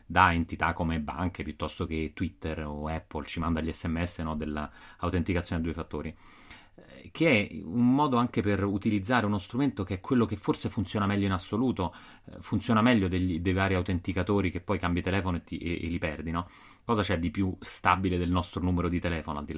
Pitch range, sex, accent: 85-105 Hz, male, native